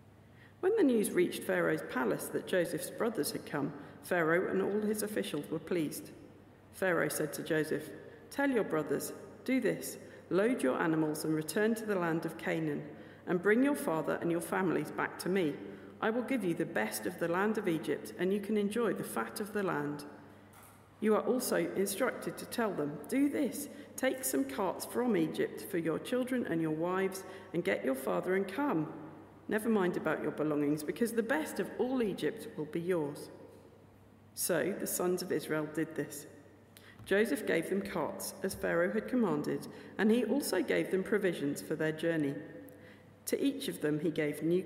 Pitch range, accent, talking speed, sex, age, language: 150-215 Hz, British, 185 wpm, female, 50-69, English